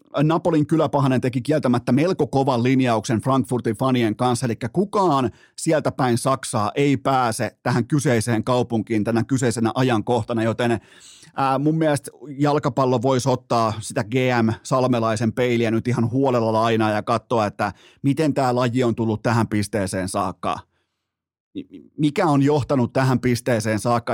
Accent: native